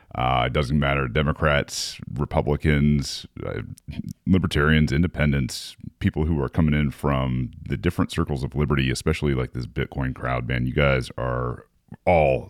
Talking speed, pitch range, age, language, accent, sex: 145 wpm, 70-85 Hz, 30-49, English, American, male